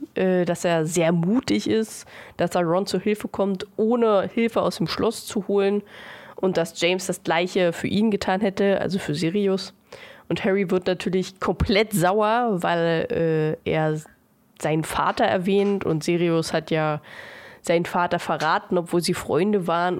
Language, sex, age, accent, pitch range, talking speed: German, female, 20-39, German, 170-220 Hz, 160 wpm